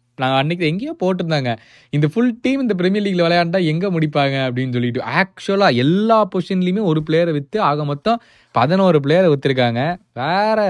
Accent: native